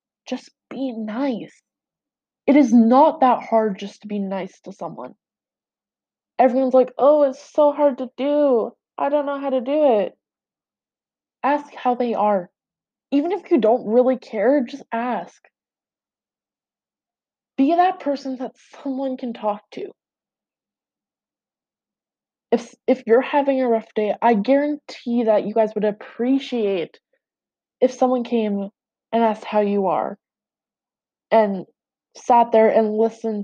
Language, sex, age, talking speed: English, female, 20-39, 135 wpm